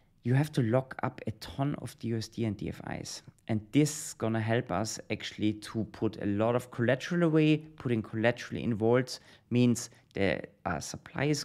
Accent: German